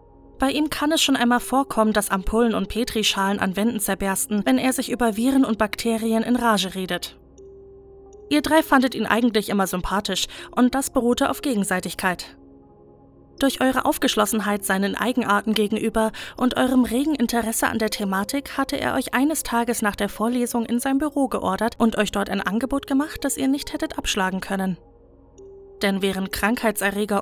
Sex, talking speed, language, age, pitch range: female, 170 wpm, German, 20-39, 205-270 Hz